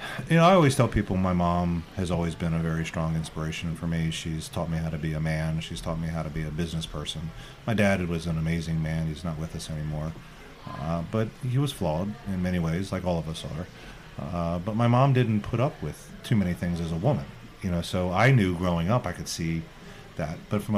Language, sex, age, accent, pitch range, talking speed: English, male, 40-59, American, 85-125 Hz, 245 wpm